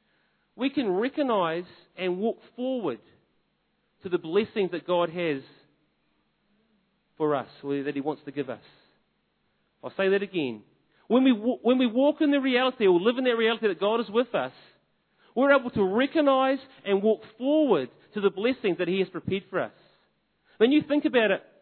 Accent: Australian